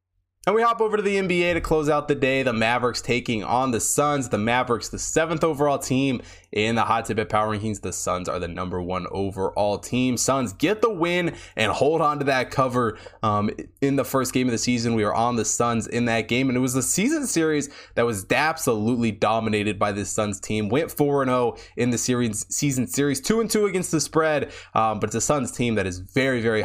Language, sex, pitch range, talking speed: English, male, 110-145 Hz, 230 wpm